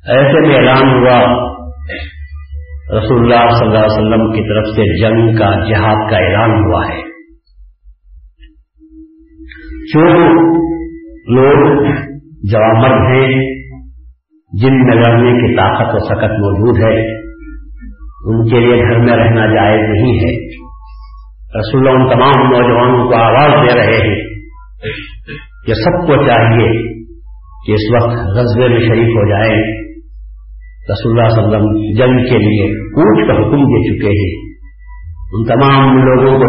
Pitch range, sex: 105-130 Hz, male